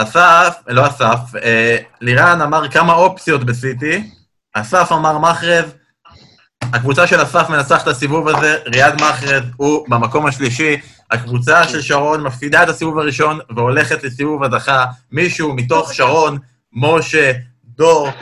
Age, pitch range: 20-39, 130-170 Hz